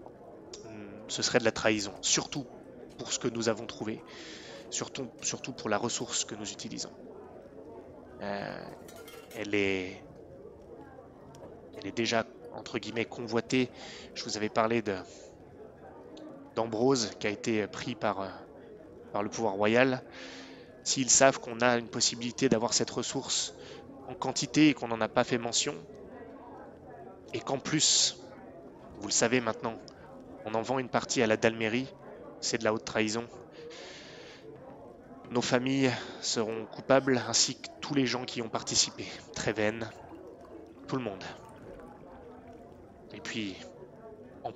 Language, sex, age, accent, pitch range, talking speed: French, male, 20-39, French, 110-130 Hz, 135 wpm